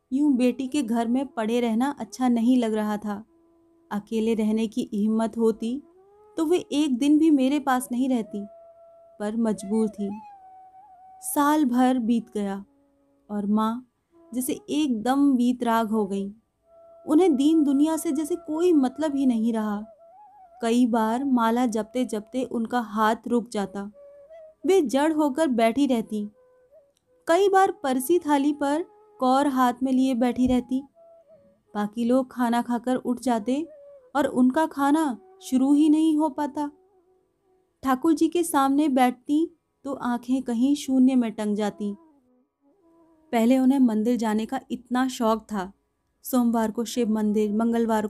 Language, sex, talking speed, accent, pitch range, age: Hindi, female, 145 wpm, native, 225-310 Hz, 30-49